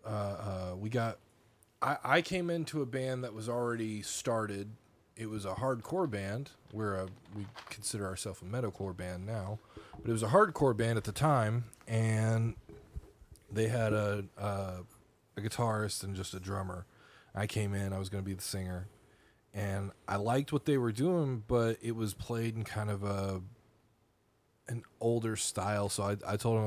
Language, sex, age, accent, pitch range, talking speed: English, male, 20-39, American, 100-115 Hz, 180 wpm